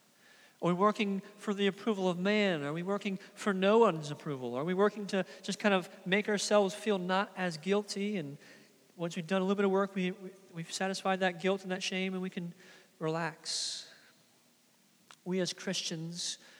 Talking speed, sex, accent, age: 190 wpm, male, American, 40-59